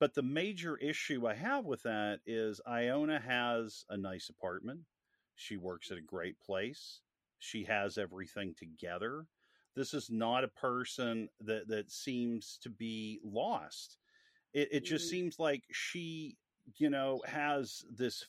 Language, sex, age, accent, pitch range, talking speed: English, male, 40-59, American, 110-140 Hz, 150 wpm